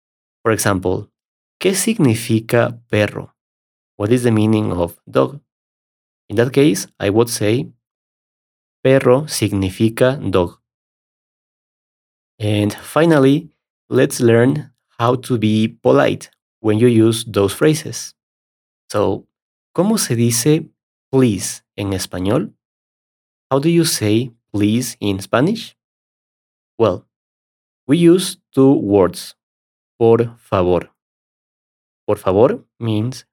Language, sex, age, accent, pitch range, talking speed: English, male, 30-49, Mexican, 95-130 Hz, 105 wpm